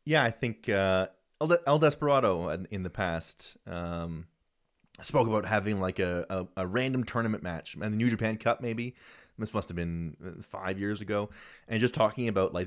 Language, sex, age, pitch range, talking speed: English, male, 30-49, 90-115 Hz, 180 wpm